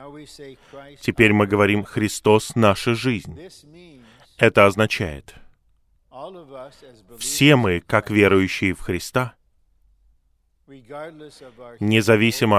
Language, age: Russian, 30-49